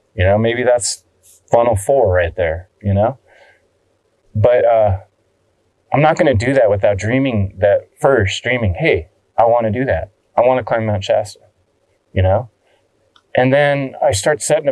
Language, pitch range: English, 95-125 Hz